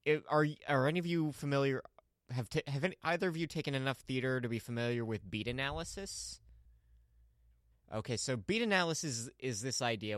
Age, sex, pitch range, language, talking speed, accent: 20-39, male, 110-145 Hz, English, 175 wpm, American